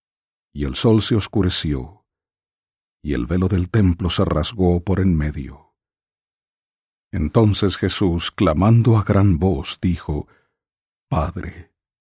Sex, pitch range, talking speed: male, 90-110 Hz, 115 wpm